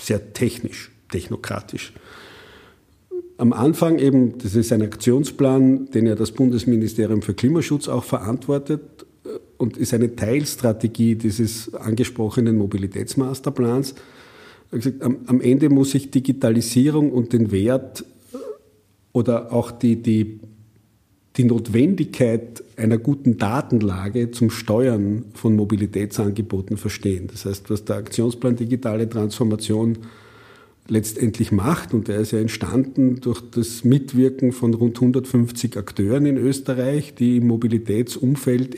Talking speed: 115 wpm